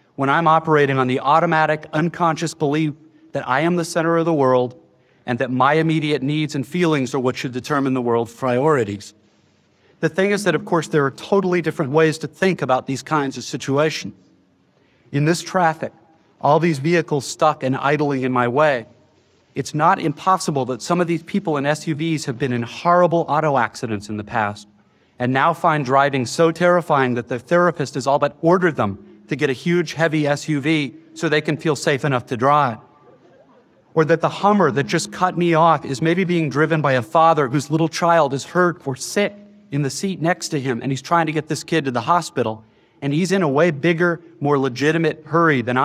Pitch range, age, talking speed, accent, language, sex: 135-165 Hz, 40-59, 205 wpm, American, English, male